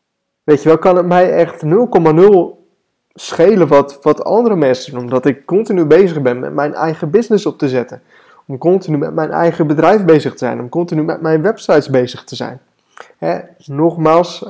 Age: 20-39